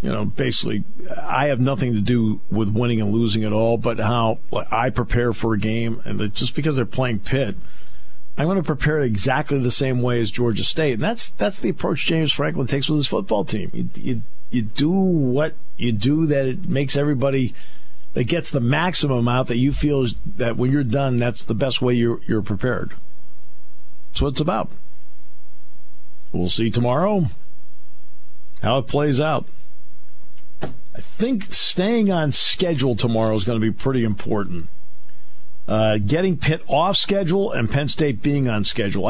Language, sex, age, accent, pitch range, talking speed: English, male, 50-69, American, 100-145 Hz, 175 wpm